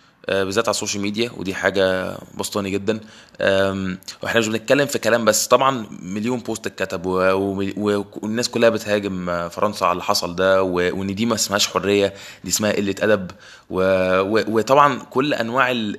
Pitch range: 95-130 Hz